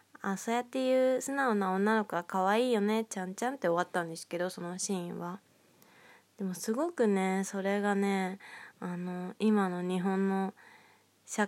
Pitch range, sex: 185-225 Hz, female